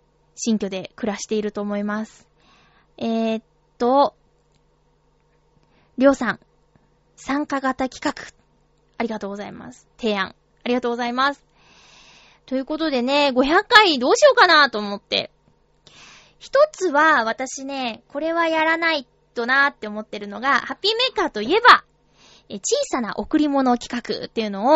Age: 20-39